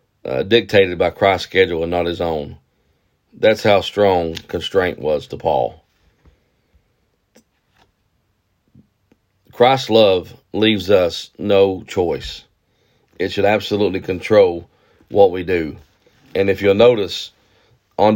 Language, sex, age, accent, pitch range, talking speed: English, male, 40-59, American, 90-110 Hz, 110 wpm